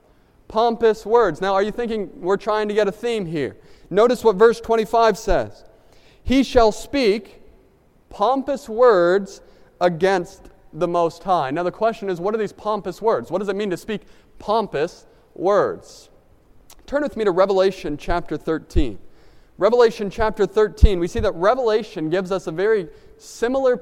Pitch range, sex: 180-230 Hz, male